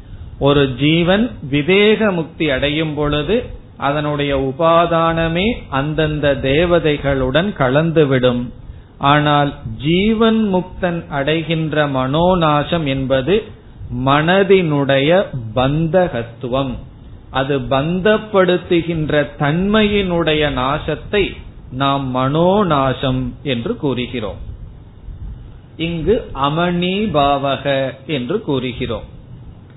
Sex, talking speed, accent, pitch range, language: male, 65 wpm, native, 130-170 Hz, Tamil